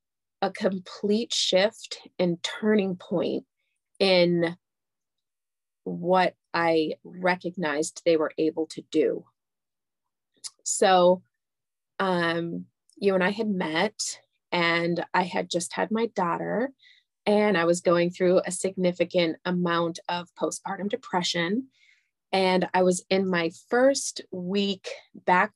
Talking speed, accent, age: 115 wpm, American, 30-49